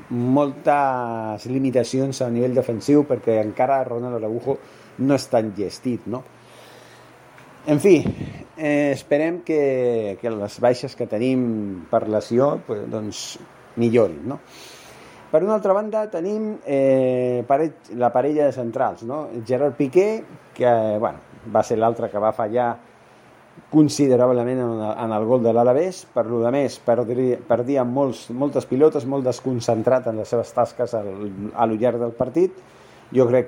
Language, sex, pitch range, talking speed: Spanish, male, 115-140 Hz, 135 wpm